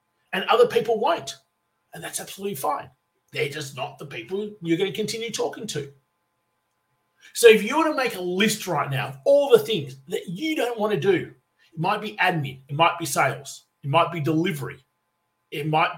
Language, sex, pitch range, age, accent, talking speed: English, male, 145-205 Hz, 30-49, Australian, 200 wpm